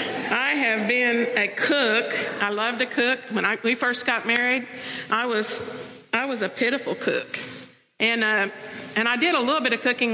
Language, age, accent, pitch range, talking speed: English, 50-69, American, 220-250 Hz, 190 wpm